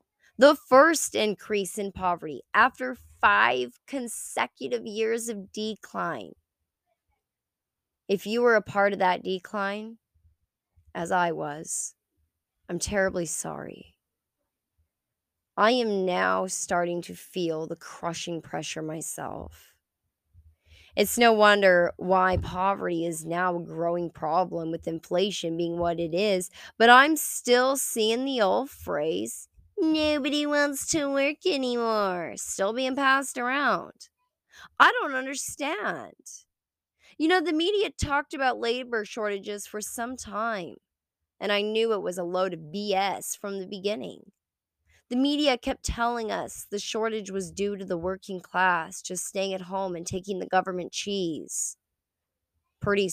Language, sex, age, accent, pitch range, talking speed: English, female, 20-39, American, 170-230 Hz, 130 wpm